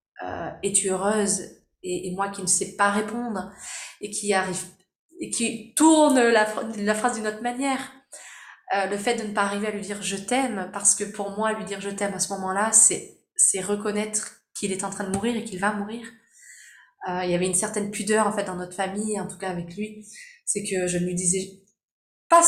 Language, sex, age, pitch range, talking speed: French, female, 20-39, 195-235 Hz, 220 wpm